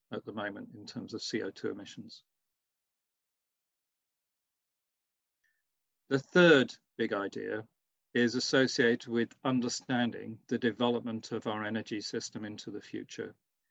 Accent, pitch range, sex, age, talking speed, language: British, 110-125 Hz, male, 40-59, 110 wpm, English